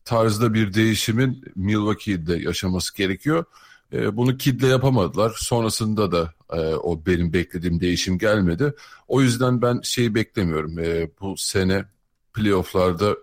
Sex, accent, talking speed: male, native, 110 wpm